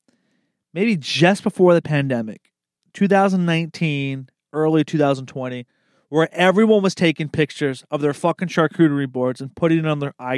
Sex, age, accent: male, 30-49, American